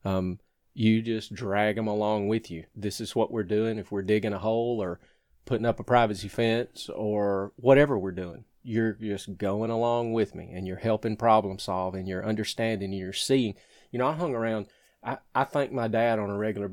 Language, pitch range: English, 105-130 Hz